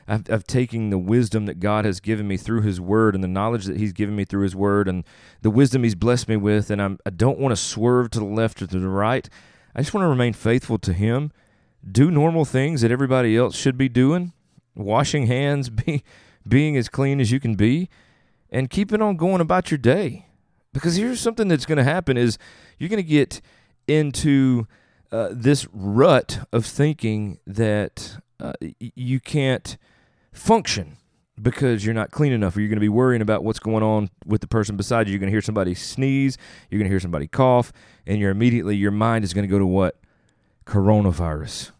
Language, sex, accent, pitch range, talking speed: English, male, American, 105-135 Hz, 200 wpm